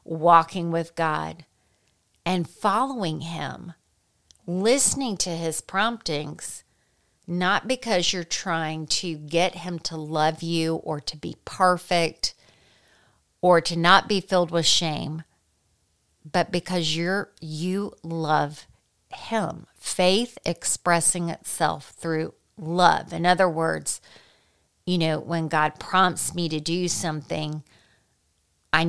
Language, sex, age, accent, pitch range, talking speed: English, female, 40-59, American, 160-185 Hz, 115 wpm